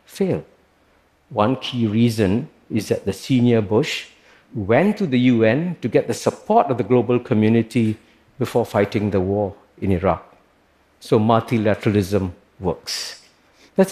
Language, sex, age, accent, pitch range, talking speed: Russian, male, 50-69, Malaysian, 110-140 Hz, 135 wpm